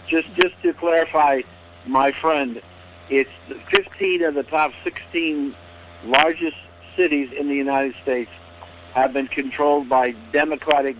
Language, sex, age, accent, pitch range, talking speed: English, male, 60-79, American, 95-145 Hz, 130 wpm